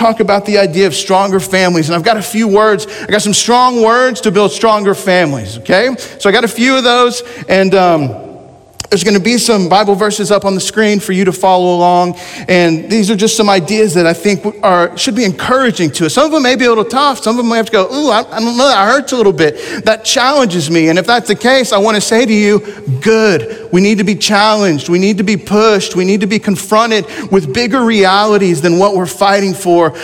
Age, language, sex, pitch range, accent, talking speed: 40-59, English, male, 170-220 Hz, American, 250 wpm